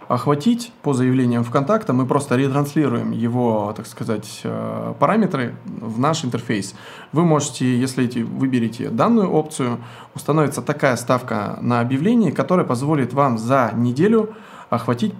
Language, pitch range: Russian, 115-150 Hz